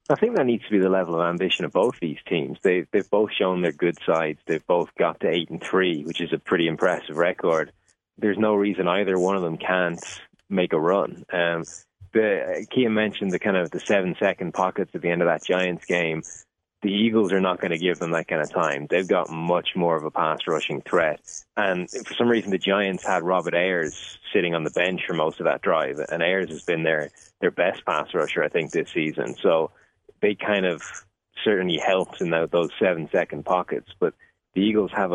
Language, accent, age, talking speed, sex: English, Irish, 20-39, 225 wpm, male